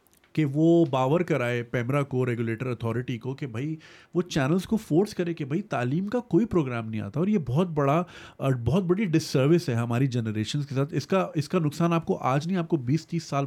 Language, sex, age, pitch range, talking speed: Urdu, male, 30-49, 125-170 Hz, 225 wpm